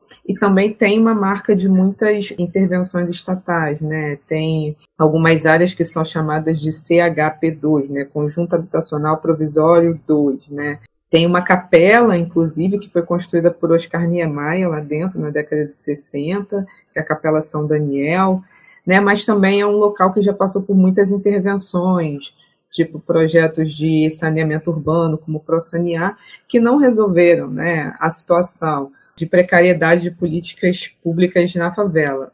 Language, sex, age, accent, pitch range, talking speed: Portuguese, female, 20-39, Brazilian, 160-195 Hz, 145 wpm